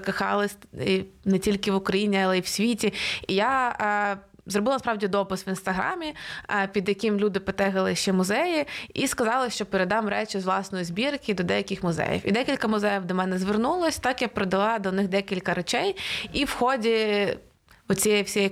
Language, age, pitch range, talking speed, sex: Ukrainian, 20-39, 190-220 Hz, 170 wpm, female